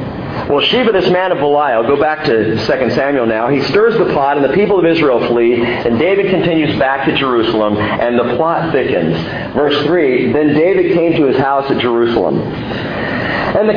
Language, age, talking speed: English, 50-69, 190 wpm